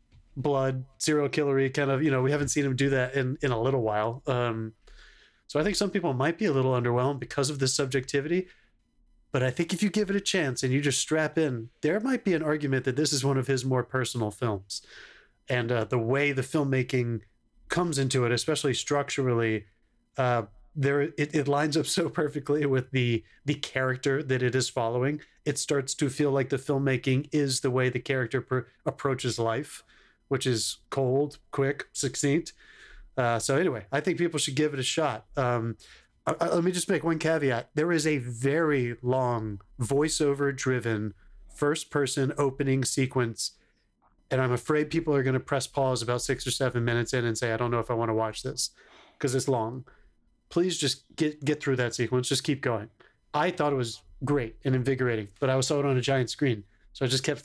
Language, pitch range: English, 125-145 Hz